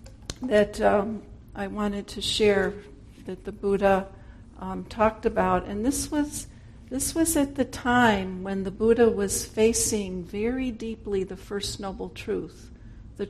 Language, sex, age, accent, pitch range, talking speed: English, female, 60-79, American, 175-220 Hz, 140 wpm